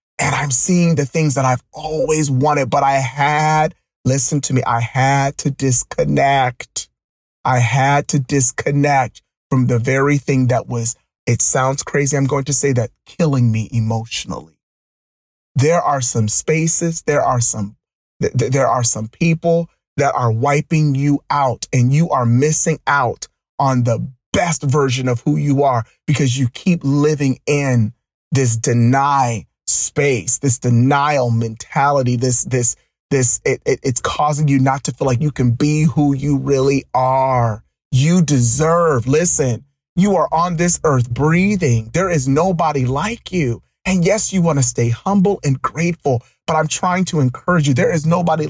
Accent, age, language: American, 30-49, English